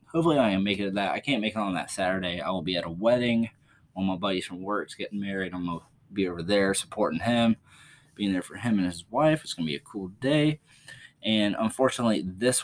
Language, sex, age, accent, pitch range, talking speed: English, male, 20-39, American, 95-125 Hz, 235 wpm